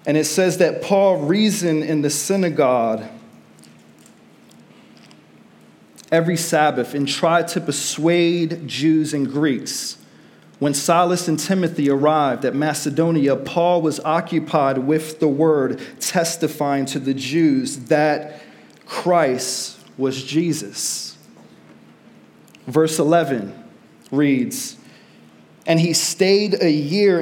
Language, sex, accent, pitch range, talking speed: English, male, American, 135-170 Hz, 105 wpm